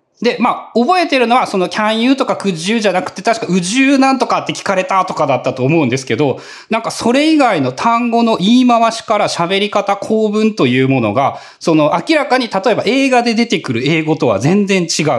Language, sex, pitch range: Japanese, male, 140-235 Hz